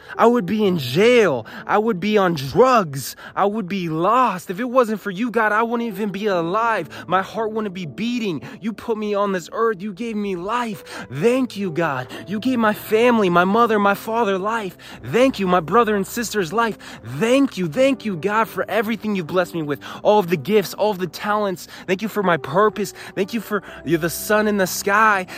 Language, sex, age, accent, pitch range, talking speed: English, male, 20-39, American, 125-200 Hz, 215 wpm